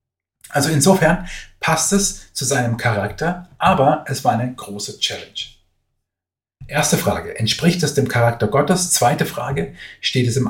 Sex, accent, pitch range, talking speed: male, German, 115-145 Hz, 145 wpm